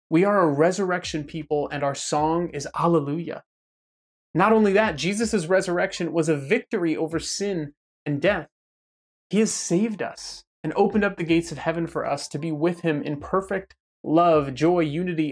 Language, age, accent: English, 30-49, American